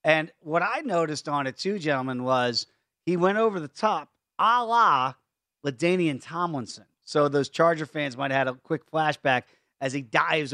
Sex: male